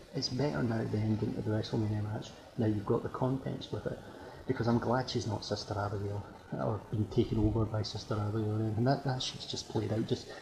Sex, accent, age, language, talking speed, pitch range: male, British, 30-49, English, 225 wpm, 105-125 Hz